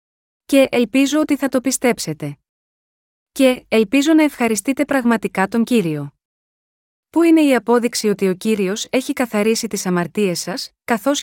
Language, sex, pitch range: Greek, female, 205-255 Hz